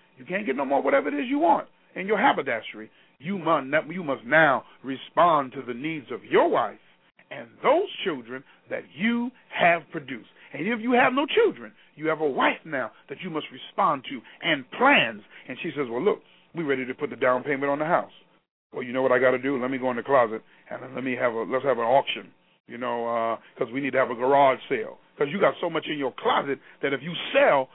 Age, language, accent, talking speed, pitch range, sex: 40-59, English, American, 235 wpm, 135-220 Hz, male